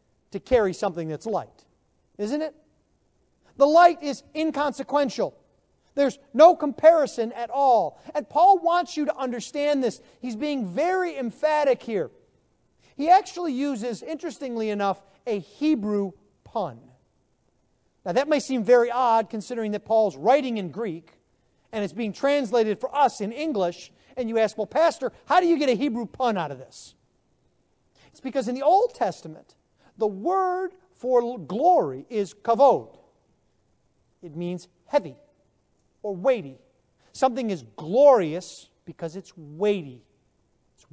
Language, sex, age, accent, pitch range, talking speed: English, male, 40-59, American, 205-295 Hz, 140 wpm